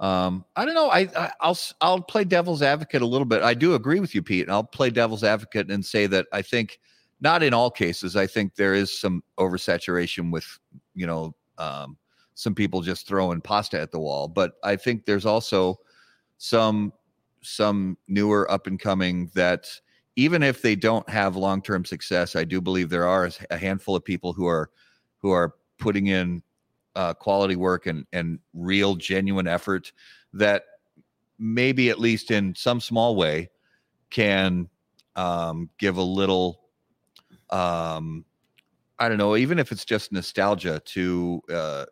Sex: male